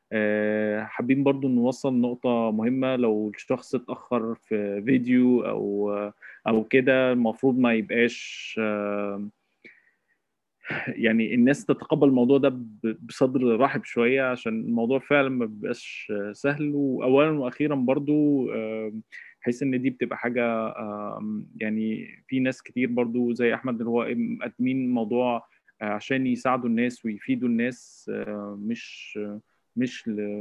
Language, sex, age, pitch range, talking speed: English, male, 20-39, 110-135 Hz, 105 wpm